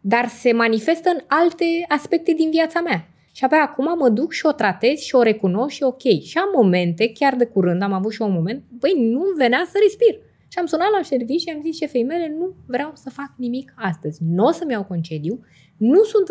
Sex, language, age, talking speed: female, Romanian, 20-39, 225 wpm